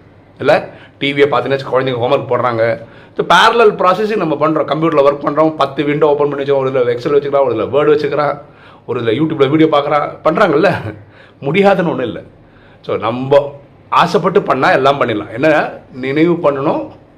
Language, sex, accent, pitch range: Tamil, male, native, 110-160 Hz